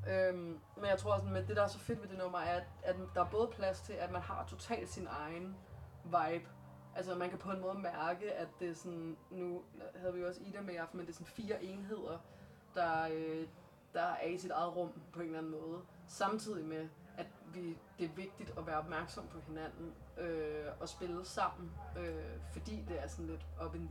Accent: native